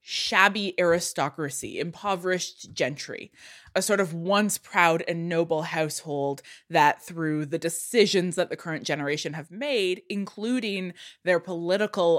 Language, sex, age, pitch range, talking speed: English, female, 20-39, 150-200 Hz, 125 wpm